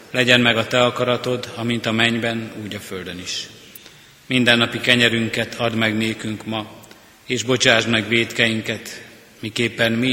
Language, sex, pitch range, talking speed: Hungarian, male, 110-125 Hz, 155 wpm